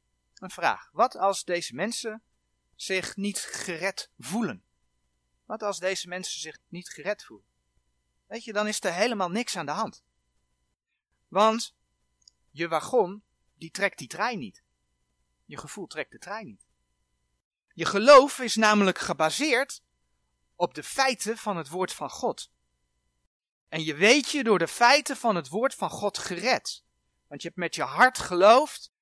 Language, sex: Dutch, male